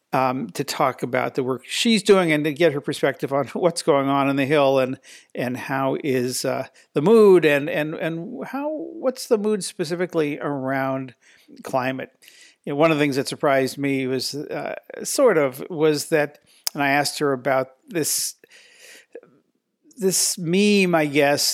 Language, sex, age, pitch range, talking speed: English, male, 50-69, 135-165 Hz, 175 wpm